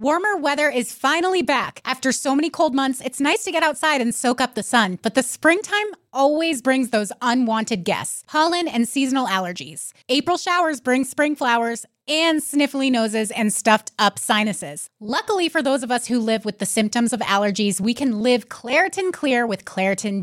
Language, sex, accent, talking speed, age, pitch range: English, female, American, 185 wpm, 30-49, 220-280 Hz